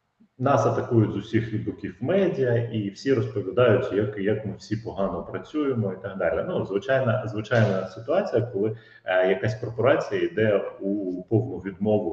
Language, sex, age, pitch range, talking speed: Ukrainian, male, 30-49, 100-125 Hz, 150 wpm